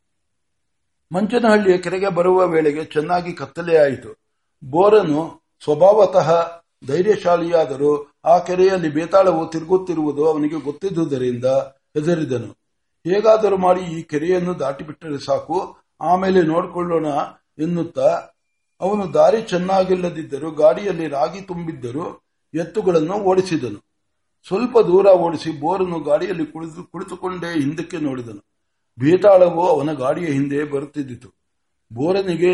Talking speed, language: 85 wpm, Kannada